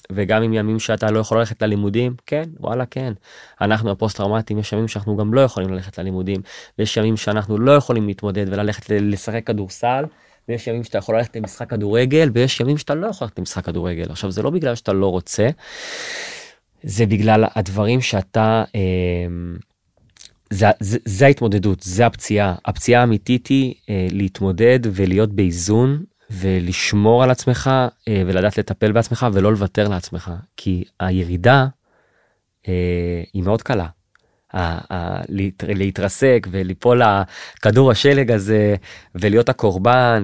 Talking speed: 125 wpm